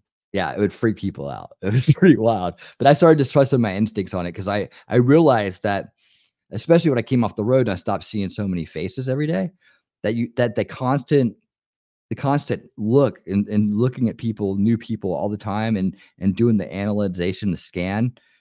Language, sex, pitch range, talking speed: English, male, 95-120 Hz, 210 wpm